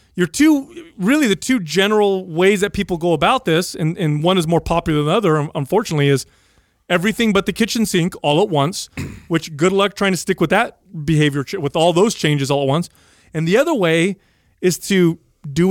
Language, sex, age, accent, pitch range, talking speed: English, male, 30-49, American, 155-205 Hz, 205 wpm